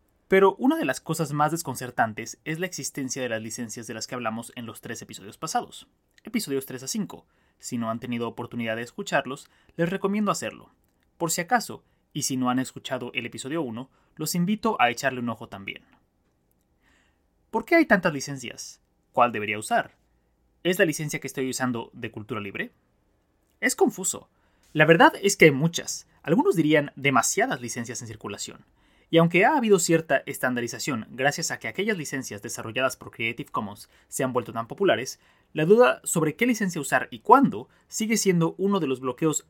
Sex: male